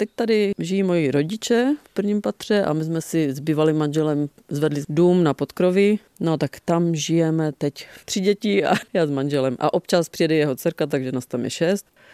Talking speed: 200 wpm